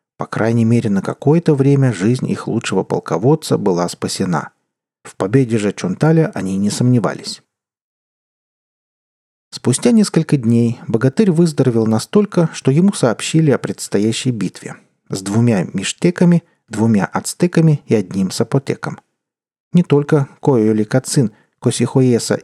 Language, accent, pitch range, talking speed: Russian, native, 115-155 Hz, 120 wpm